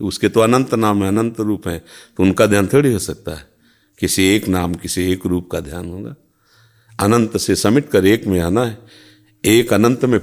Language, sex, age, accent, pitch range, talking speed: Hindi, male, 50-69, native, 95-120 Hz, 205 wpm